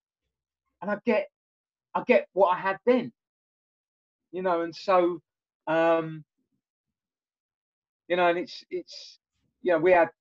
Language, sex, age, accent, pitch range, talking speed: English, male, 40-59, British, 140-225 Hz, 135 wpm